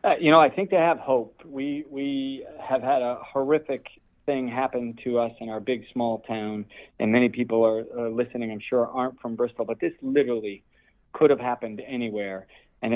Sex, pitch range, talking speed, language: male, 110-130 Hz, 195 wpm, English